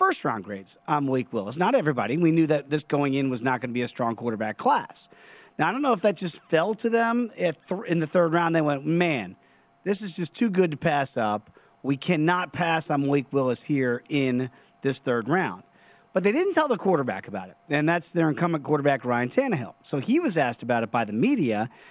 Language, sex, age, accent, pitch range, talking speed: English, male, 40-59, American, 135-180 Hz, 225 wpm